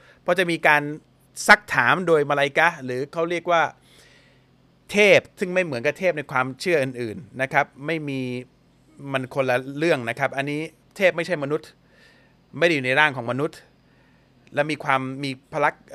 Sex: male